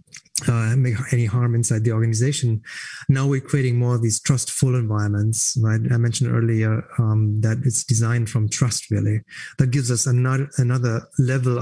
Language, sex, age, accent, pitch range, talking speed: English, male, 30-49, German, 115-140 Hz, 165 wpm